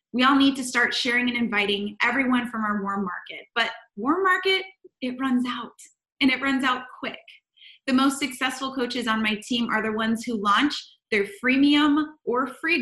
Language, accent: English, American